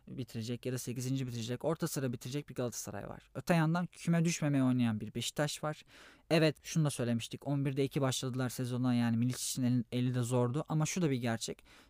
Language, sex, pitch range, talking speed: Turkish, male, 125-155 Hz, 185 wpm